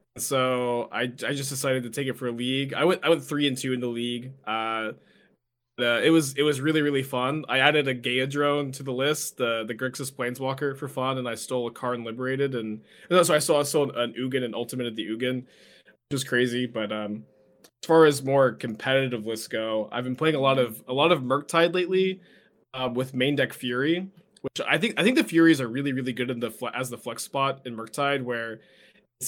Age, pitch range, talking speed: 20-39, 120-140 Hz, 230 wpm